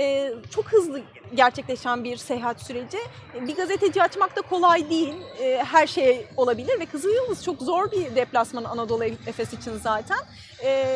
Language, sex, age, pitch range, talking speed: Turkish, female, 30-49, 275-405 Hz, 135 wpm